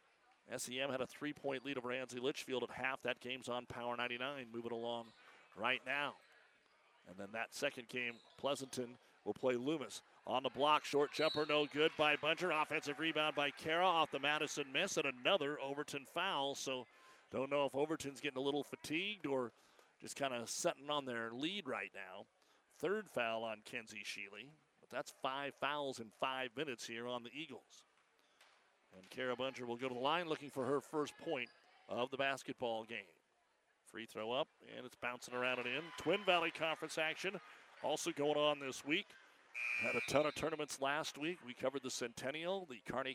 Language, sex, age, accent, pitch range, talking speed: English, male, 40-59, American, 125-150 Hz, 185 wpm